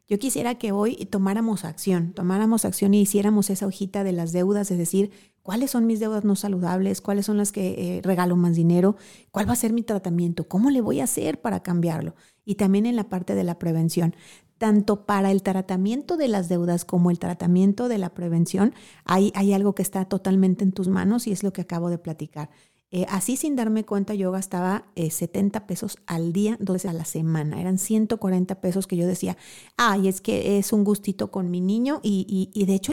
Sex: female